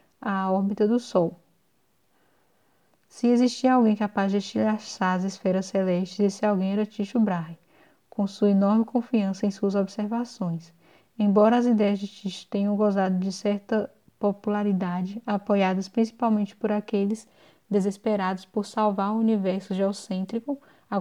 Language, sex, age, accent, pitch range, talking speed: Portuguese, female, 10-29, Brazilian, 200-220 Hz, 130 wpm